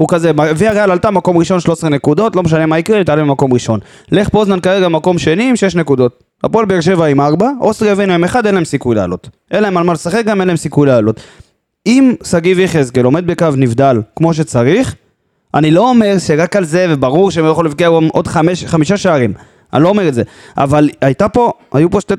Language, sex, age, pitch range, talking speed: Hebrew, male, 20-39, 135-185 Hz, 220 wpm